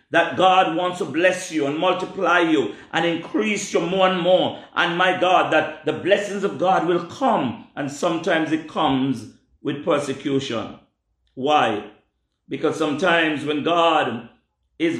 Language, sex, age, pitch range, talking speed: English, male, 50-69, 155-190 Hz, 150 wpm